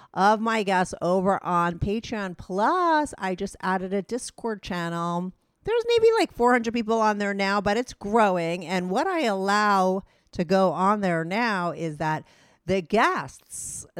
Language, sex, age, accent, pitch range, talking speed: English, female, 40-59, American, 155-205 Hz, 160 wpm